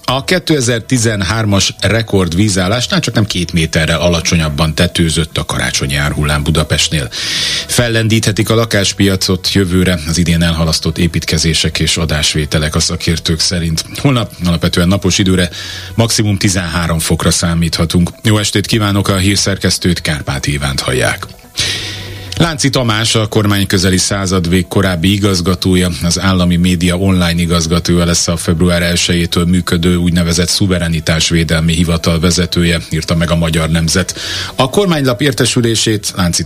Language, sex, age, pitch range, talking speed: Hungarian, male, 30-49, 85-100 Hz, 120 wpm